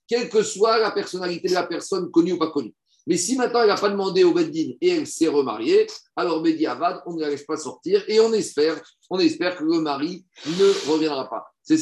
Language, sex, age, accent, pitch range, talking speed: French, male, 50-69, French, 160-235 Hz, 235 wpm